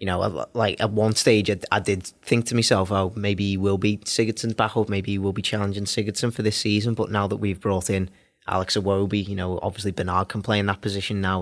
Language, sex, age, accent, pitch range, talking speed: English, male, 20-39, British, 100-110 Hz, 240 wpm